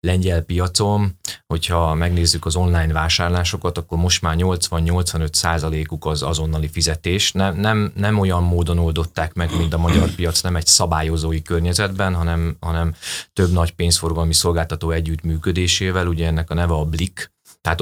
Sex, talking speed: male, 145 wpm